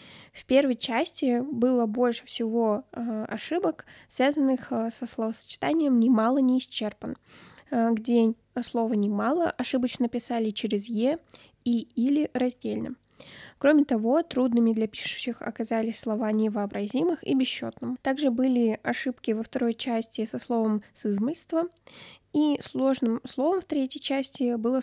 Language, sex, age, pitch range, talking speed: Russian, female, 20-39, 225-260 Hz, 120 wpm